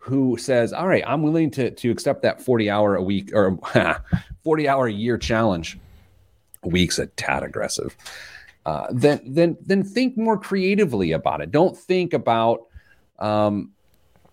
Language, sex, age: English, male, 40-59